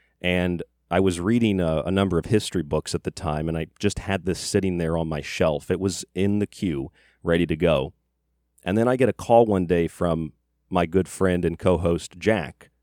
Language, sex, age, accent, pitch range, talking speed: English, male, 40-59, American, 80-95 Hz, 215 wpm